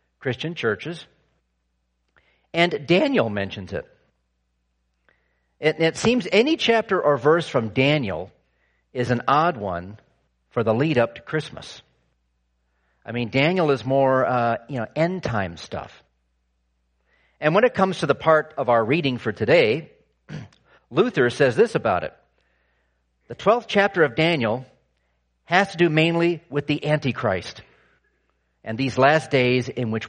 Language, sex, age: English, male, 50-69